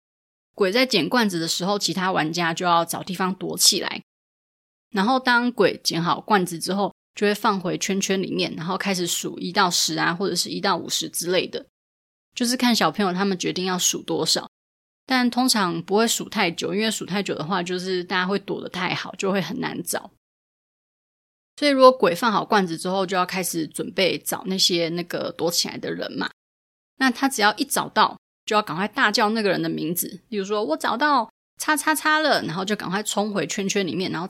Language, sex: Chinese, female